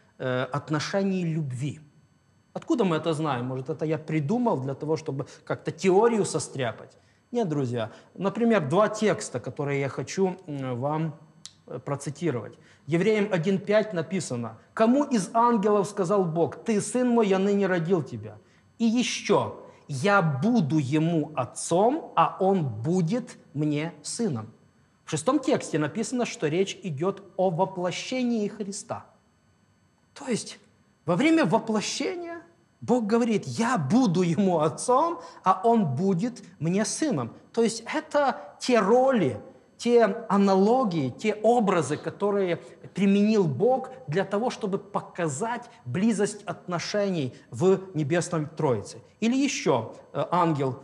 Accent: native